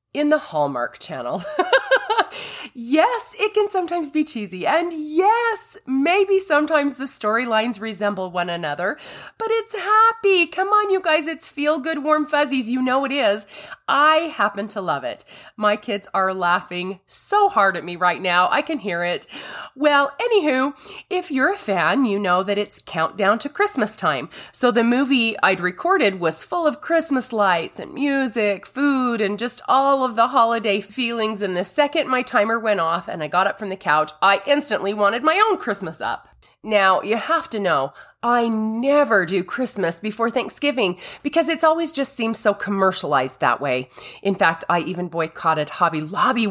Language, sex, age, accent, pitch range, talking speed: English, female, 30-49, American, 190-310 Hz, 175 wpm